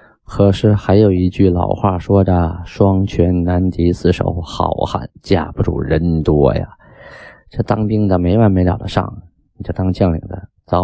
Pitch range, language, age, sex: 90-105 Hz, Chinese, 20-39, male